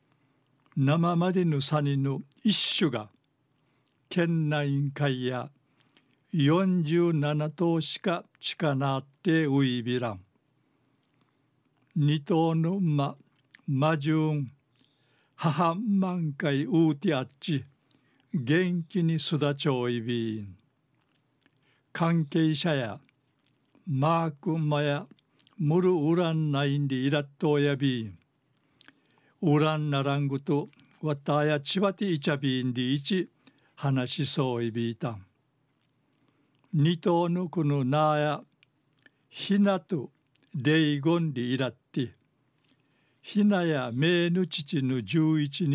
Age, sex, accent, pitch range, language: 60-79, male, native, 135-165 Hz, Japanese